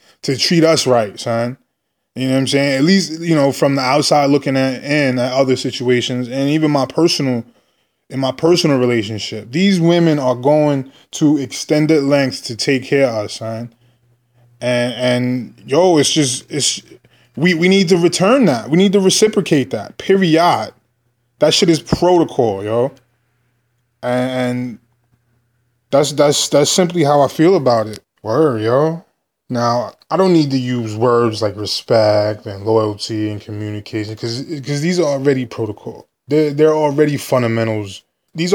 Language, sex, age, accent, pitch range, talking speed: English, male, 20-39, American, 115-145 Hz, 160 wpm